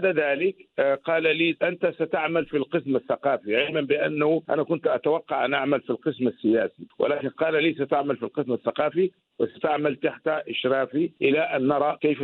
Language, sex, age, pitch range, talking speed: Arabic, male, 50-69, 125-160 Hz, 165 wpm